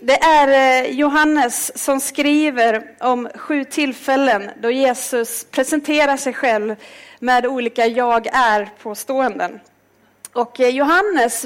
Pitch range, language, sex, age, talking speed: 230-290 Hz, Swedish, female, 40-59, 100 wpm